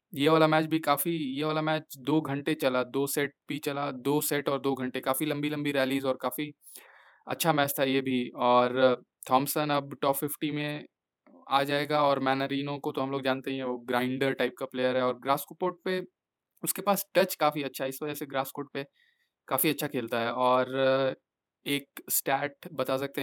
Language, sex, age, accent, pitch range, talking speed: Hindi, male, 20-39, native, 130-150 Hz, 200 wpm